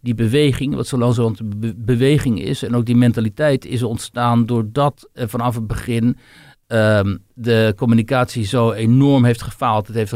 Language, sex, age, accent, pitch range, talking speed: Dutch, male, 60-79, Dutch, 115-145 Hz, 175 wpm